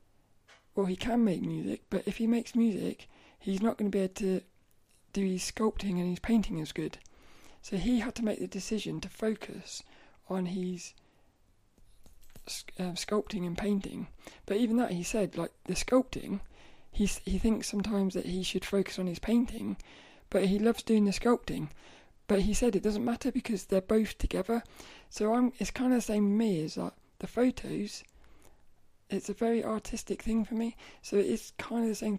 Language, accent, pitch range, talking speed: English, British, 185-225 Hz, 190 wpm